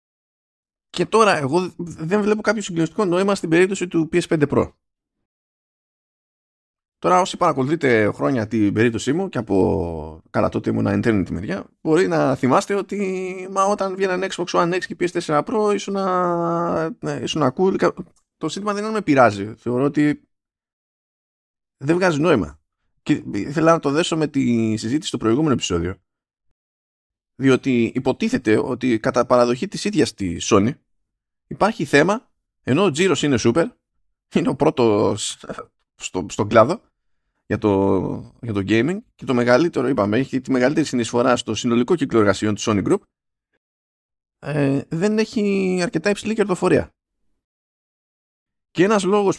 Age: 20-39